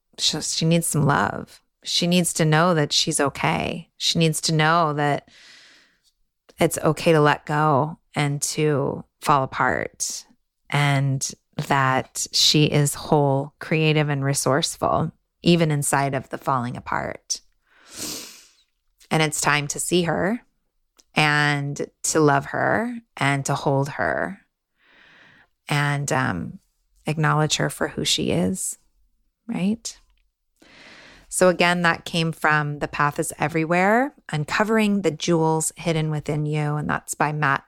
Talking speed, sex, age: 130 wpm, female, 20-39